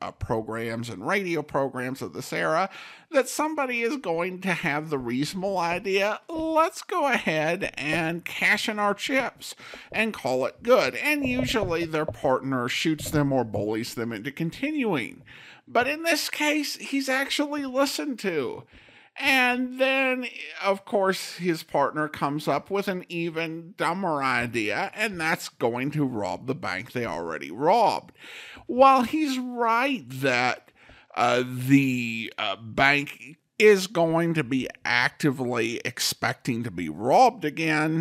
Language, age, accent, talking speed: English, 50-69, American, 140 wpm